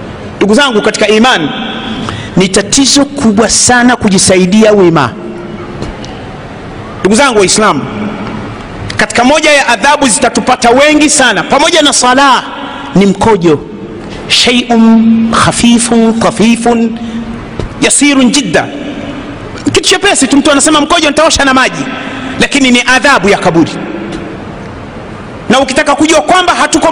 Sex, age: male, 40-59